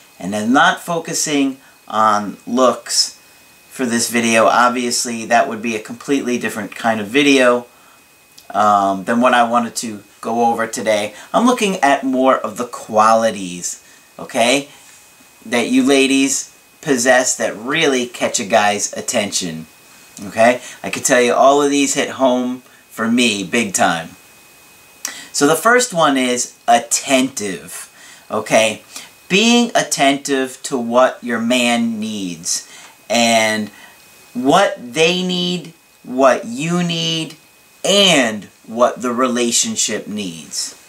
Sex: male